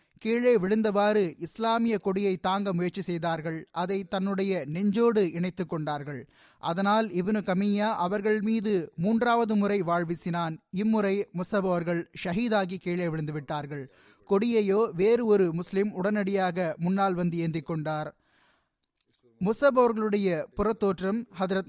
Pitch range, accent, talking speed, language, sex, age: 175-210 Hz, native, 100 wpm, Tamil, male, 20-39